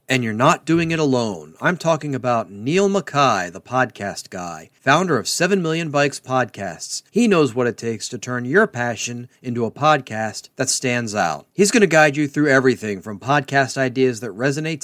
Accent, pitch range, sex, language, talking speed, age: American, 125-160 Hz, male, English, 190 wpm, 40-59